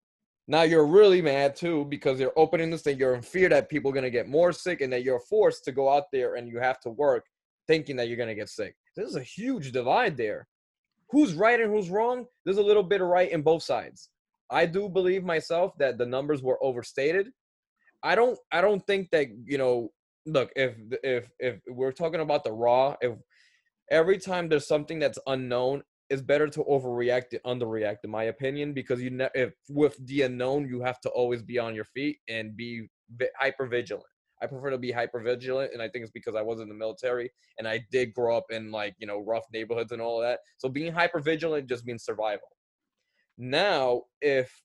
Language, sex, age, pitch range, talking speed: English, male, 20-39, 120-160 Hz, 210 wpm